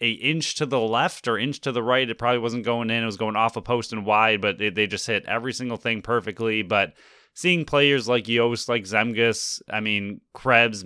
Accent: American